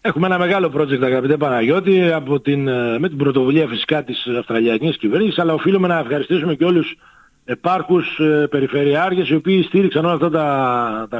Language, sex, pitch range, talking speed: Greek, male, 135-165 Hz, 165 wpm